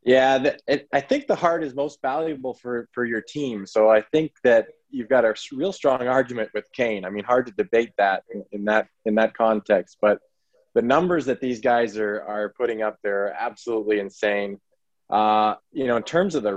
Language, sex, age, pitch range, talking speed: English, male, 20-39, 105-125 Hz, 210 wpm